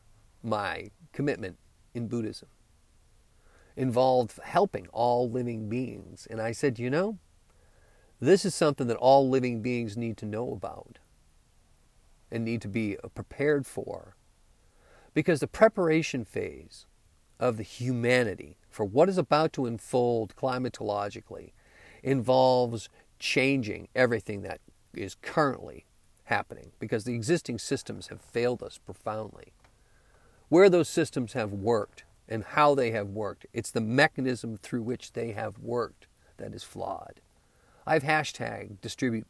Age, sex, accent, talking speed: 50-69, male, American, 130 wpm